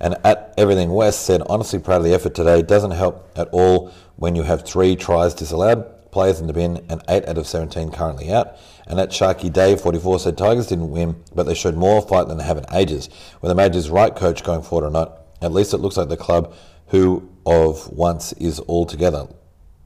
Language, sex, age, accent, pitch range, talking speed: English, male, 40-59, Australian, 80-95 Hz, 220 wpm